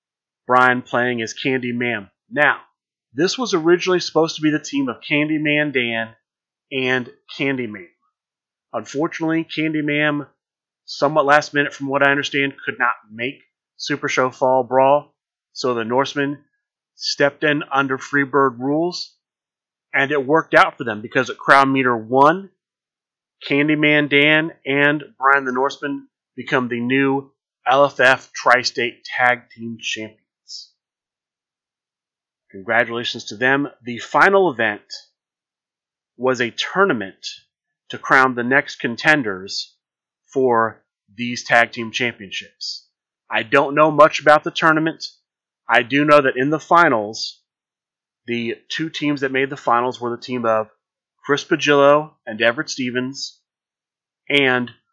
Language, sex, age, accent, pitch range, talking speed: English, male, 30-49, American, 125-150 Hz, 130 wpm